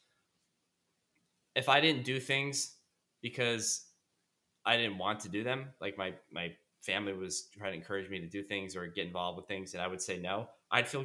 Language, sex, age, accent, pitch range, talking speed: English, male, 10-29, American, 95-120 Hz, 195 wpm